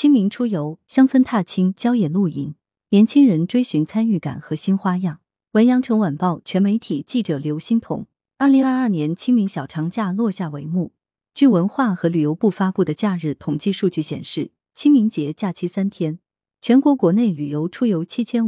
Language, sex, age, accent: Chinese, female, 30-49, native